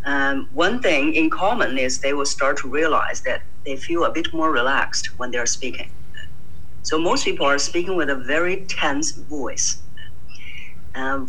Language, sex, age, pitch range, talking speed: English, female, 50-69, 130-185 Hz, 170 wpm